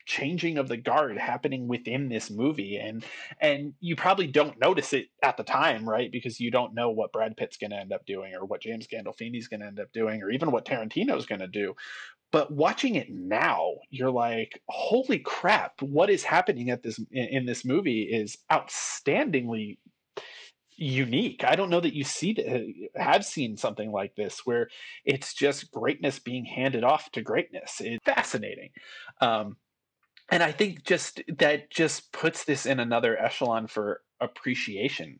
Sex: male